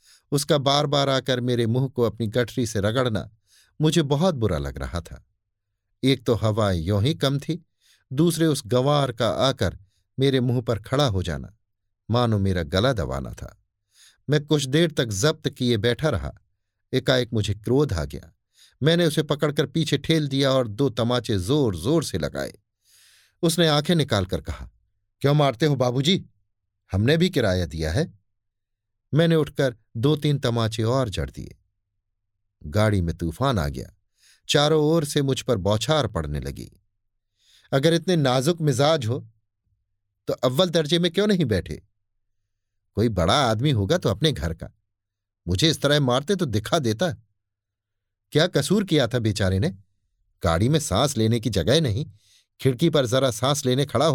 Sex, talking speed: male, 160 wpm